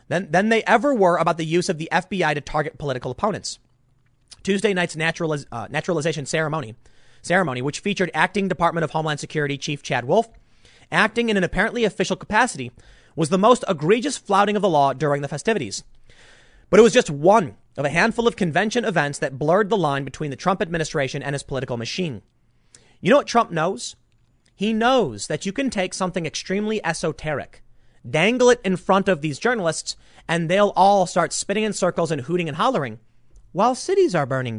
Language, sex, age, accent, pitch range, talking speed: English, male, 30-49, American, 135-200 Hz, 185 wpm